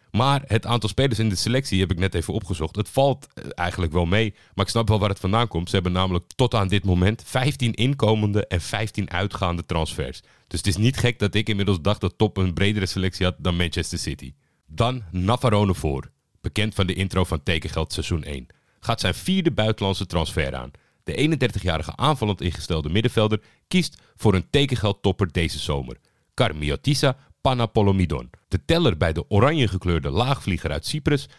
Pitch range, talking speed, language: 85-115 Hz, 180 wpm, Dutch